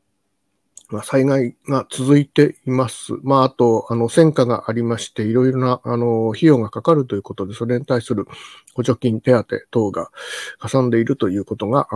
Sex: male